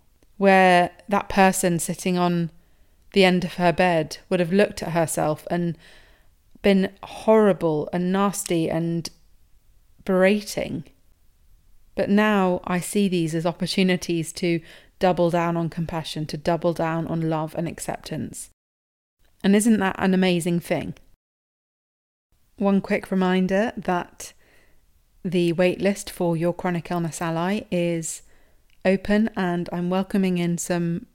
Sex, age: female, 30-49